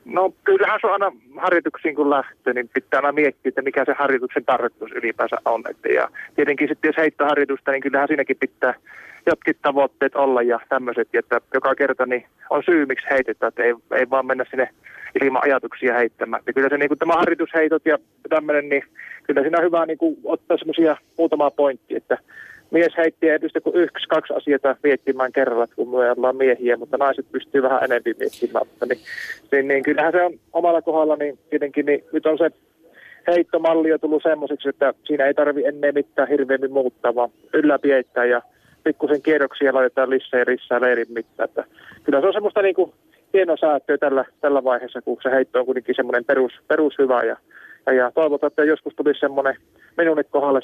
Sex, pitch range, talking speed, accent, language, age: male, 130-160 Hz, 175 wpm, native, Finnish, 30-49